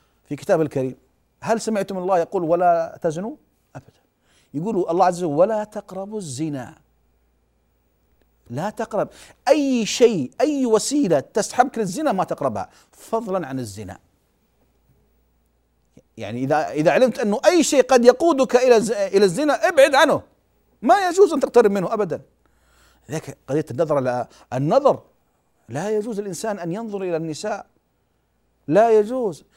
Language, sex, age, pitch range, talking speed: Arabic, male, 40-59, 145-240 Hz, 130 wpm